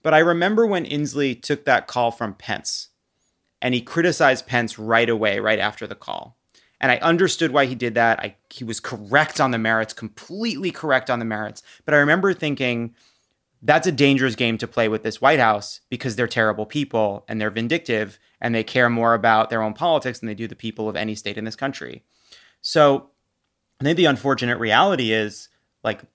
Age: 30-49